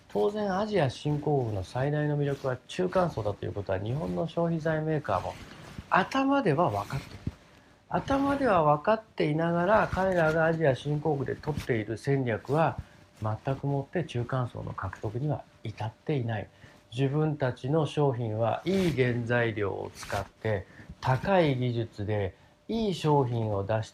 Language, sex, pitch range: Japanese, male, 110-160 Hz